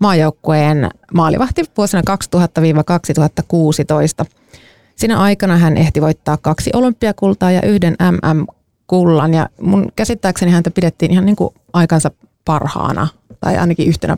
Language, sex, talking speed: Finnish, female, 115 wpm